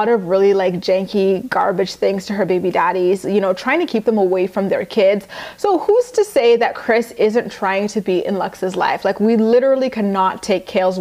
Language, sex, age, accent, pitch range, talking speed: English, female, 20-39, American, 195-245 Hz, 215 wpm